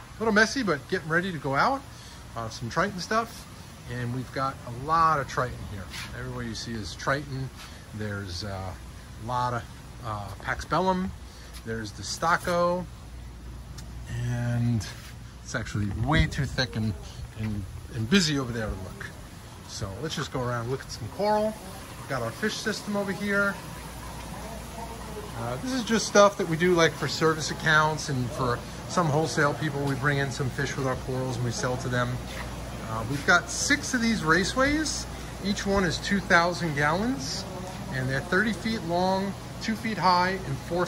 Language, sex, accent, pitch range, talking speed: English, male, American, 120-175 Hz, 175 wpm